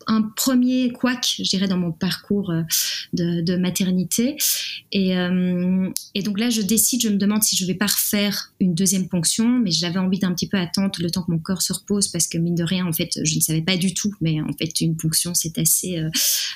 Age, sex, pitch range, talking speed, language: 20-39, female, 170-205 Hz, 235 wpm, French